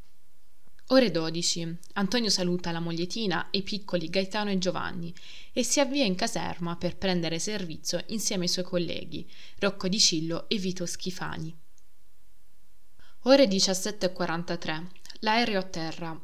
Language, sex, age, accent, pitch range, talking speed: Italian, female, 20-39, native, 175-200 Hz, 130 wpm